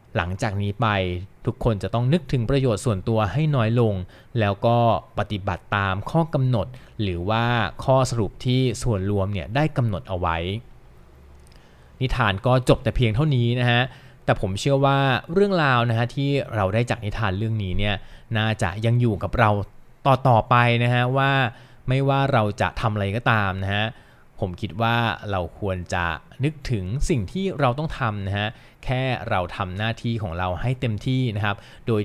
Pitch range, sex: 100-125 Hz, male